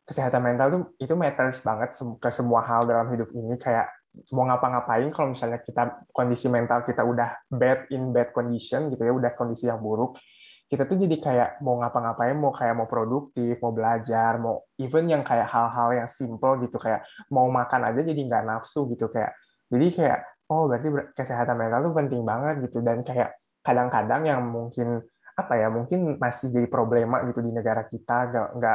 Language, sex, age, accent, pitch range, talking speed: Indonesian, male, 20-39, native, 120-140 Hz, 180 wpm